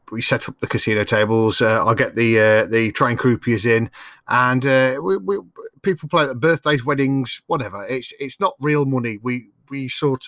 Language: English